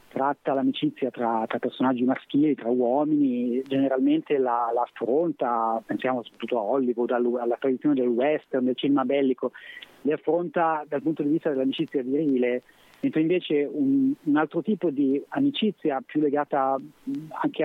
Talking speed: 140 wpm